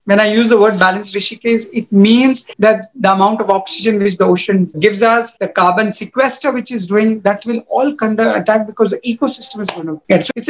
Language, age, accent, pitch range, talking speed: English, 50-69, Indian, 205-265 Hz, 225 wpm